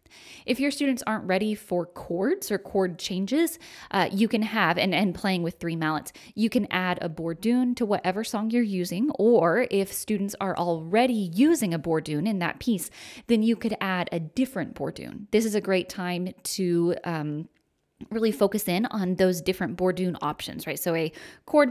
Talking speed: 180 wpm